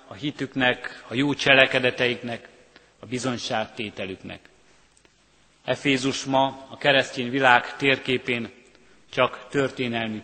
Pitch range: 125-140 Hz